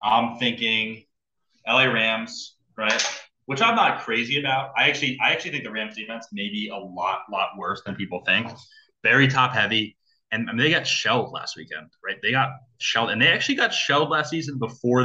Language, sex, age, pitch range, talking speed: English, male, 20-39, 95-140 Hz, 190 wpm